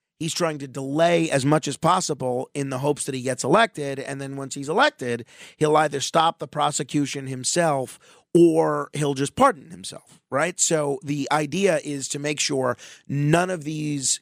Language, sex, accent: English, male, American